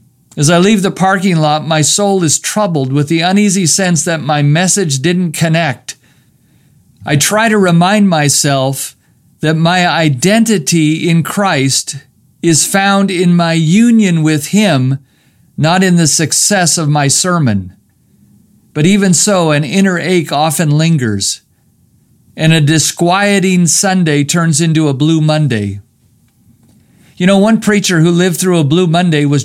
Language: English